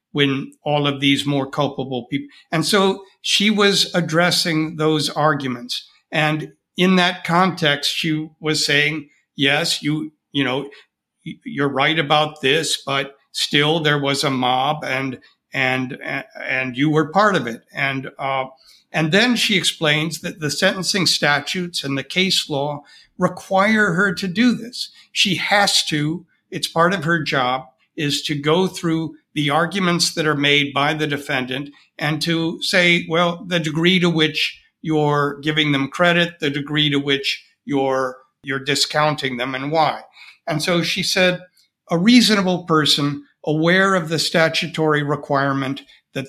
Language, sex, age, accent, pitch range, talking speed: English, male, 60-79, American, 140-175 Hz, 155 wpm